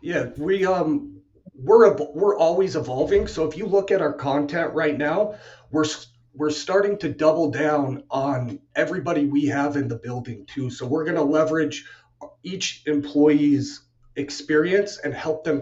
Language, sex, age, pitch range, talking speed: English, male, 40-59, 130-155 Hz, 155 wpm